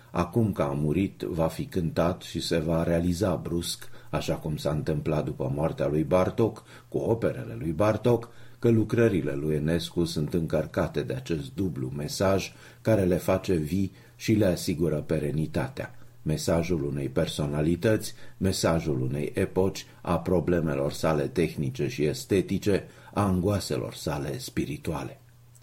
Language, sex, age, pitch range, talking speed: Romanian, male, 50-69, 80-110 Hz, 135 wpm